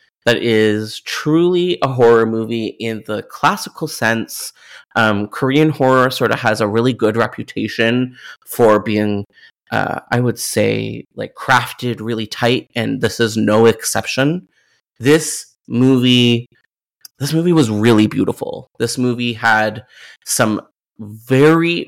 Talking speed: 130 wpm